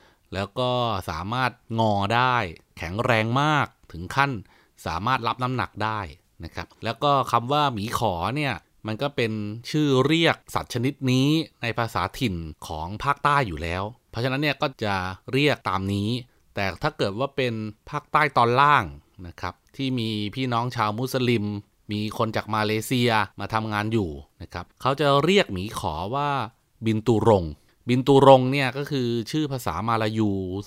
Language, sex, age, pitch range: Thai, male, 30-49, 100-130 Hz